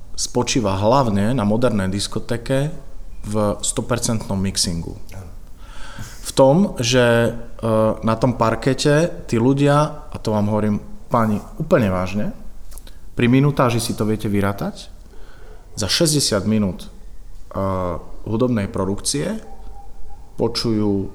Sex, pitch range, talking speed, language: male, 100-120 Hz, 100 wpm, Slovak